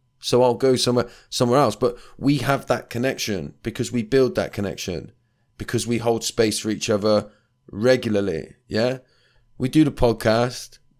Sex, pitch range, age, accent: male, 100-125 Hz, 20-39, British